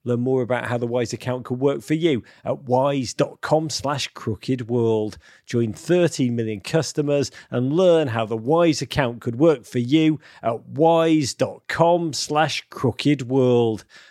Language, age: English, 40-59